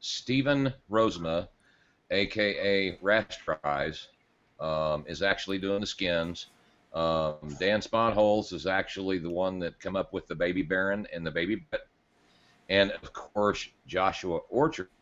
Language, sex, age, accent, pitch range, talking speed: English, male, 40-59, American, 80-95 Hz, 130 wpm